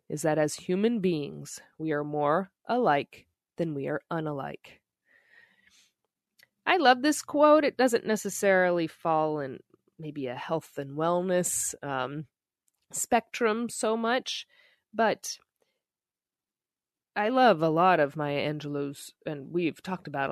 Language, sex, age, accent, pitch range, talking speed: English, female, 20-39, American, 145-210 Hz, 125 wpm